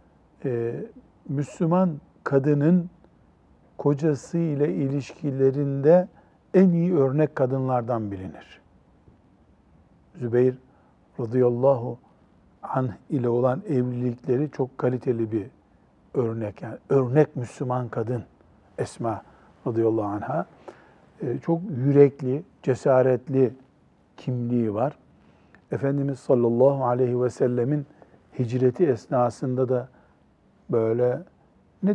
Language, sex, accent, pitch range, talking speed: Turkish, male, native, 115-145 Hz, 85 wpm